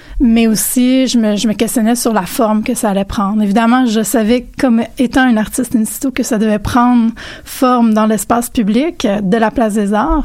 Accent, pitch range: Canadian, 220-250 Hz